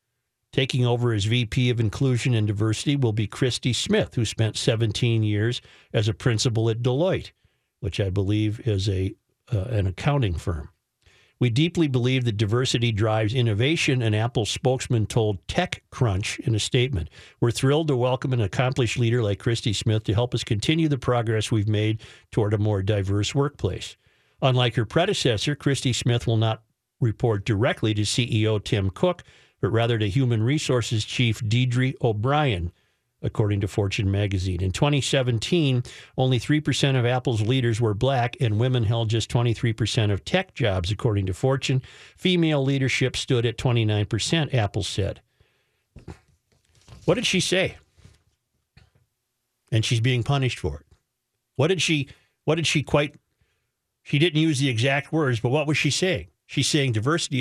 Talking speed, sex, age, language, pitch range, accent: 155 wpm, male, 50-69, English, 110-135 Hz, American